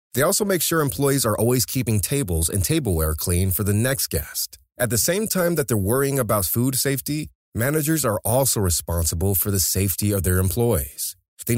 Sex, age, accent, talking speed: male, 30-49, American, 190 wpm